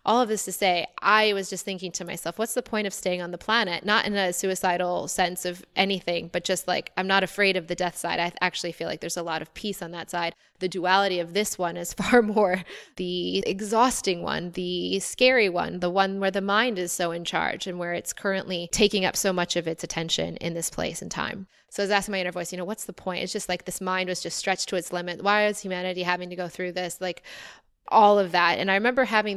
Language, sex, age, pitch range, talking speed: English, female, 20-39, 175-195 Hz, 255 wpm